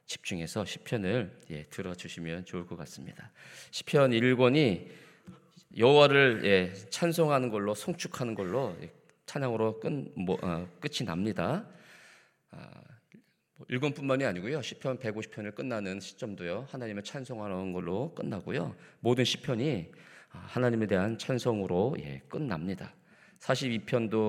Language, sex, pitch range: Korean, male, 95-130 Hz